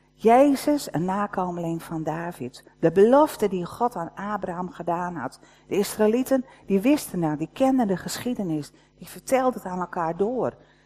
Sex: female